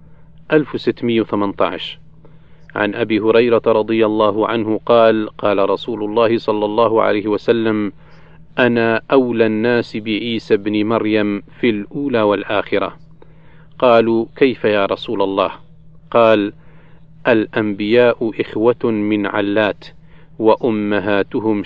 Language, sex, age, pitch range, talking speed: Arabic, male, 40-59, 105-155 Hz, 95 wpm